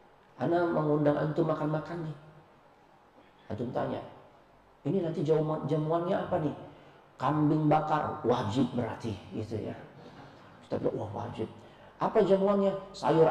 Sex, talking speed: male, 110 wpm